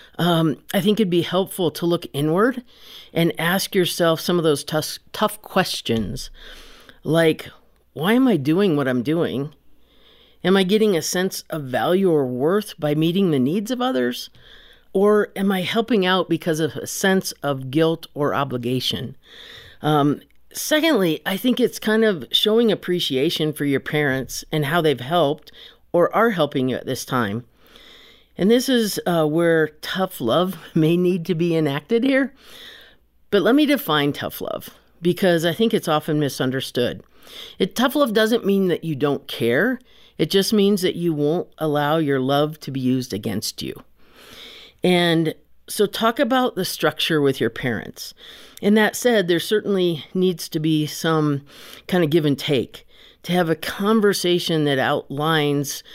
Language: English